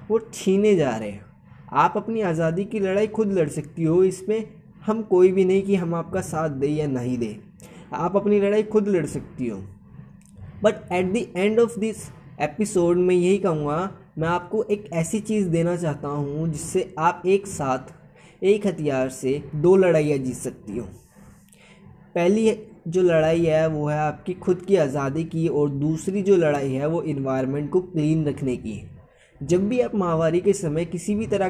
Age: 20-39